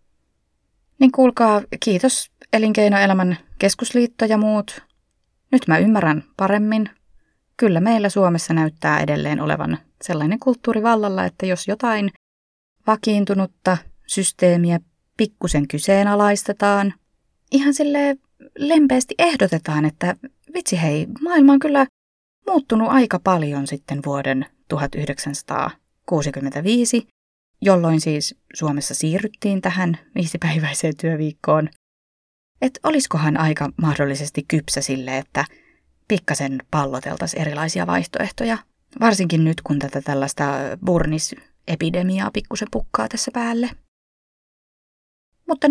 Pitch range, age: 160-230 Hz, 20-39